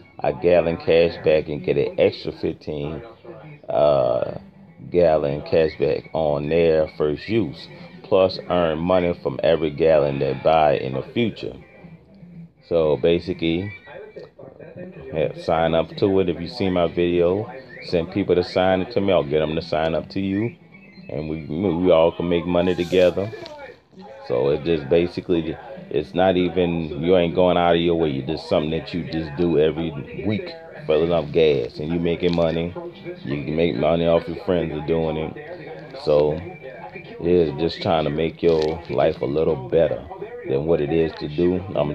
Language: English